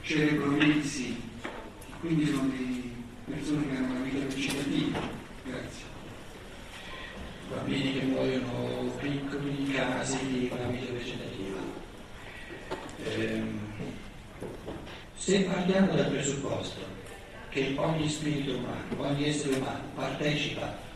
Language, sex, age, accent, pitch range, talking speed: Italian, male, 60-79, native, 125-155 Hz, 95 wpm